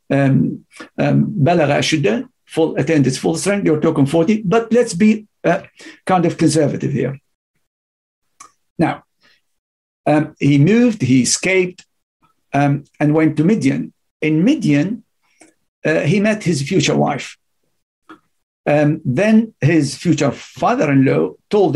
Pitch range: 145-205 Hz